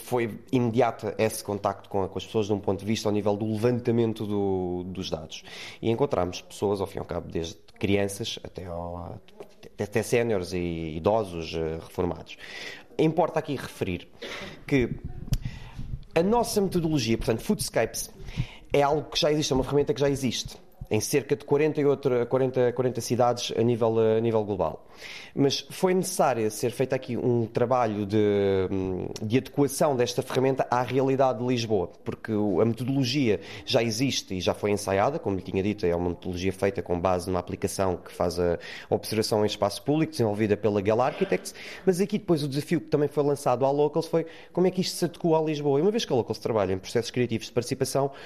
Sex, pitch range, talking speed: male, 105-145 Hz, 185 wpm